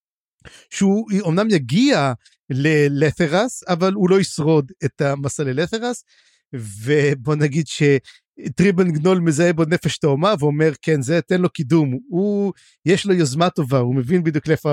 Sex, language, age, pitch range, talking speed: male, Hebrew, 50-69, 150-195 Hz, 140 wpm